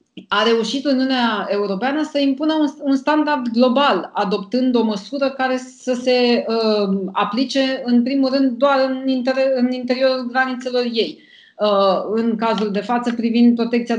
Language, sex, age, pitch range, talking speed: Romanian, female, 30-49, 210-265 Hz, 130 wpm